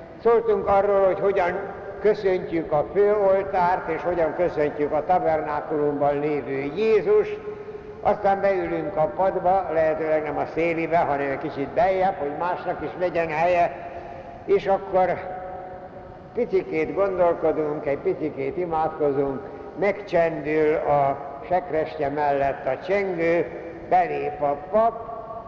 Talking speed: 110 wpm